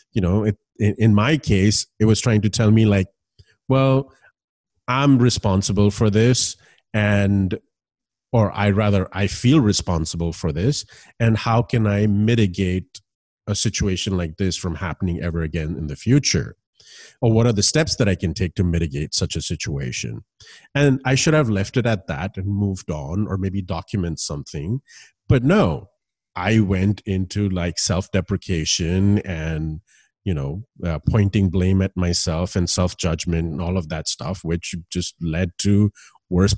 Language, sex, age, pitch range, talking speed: English, male, 40-59, 90-115 Hz, 160 wpm